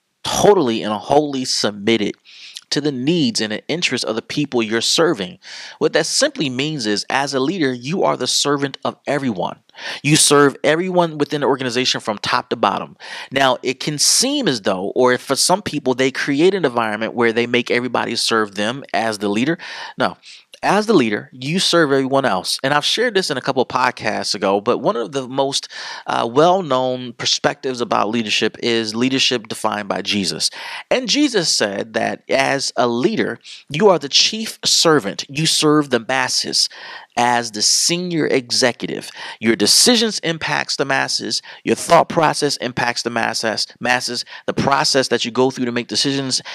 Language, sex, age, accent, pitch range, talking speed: English, male, 30-49, American, 115-150 Hz, 175 wpm